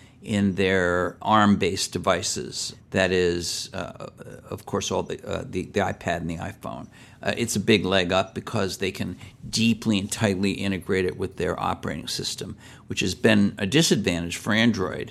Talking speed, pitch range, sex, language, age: 170 wpm, 95-110 Hz, male, English, 60-79